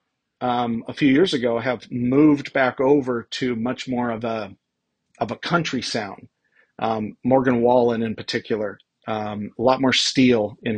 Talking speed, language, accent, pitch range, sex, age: 150 wpm, English, American, 115-140 Hz, male, 40-59